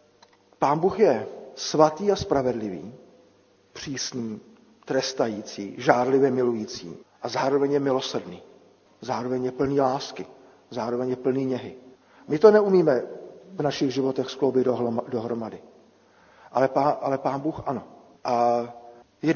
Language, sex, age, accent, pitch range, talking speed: Czech, male, 50-69, native, 130-180 Hz, 120 wpm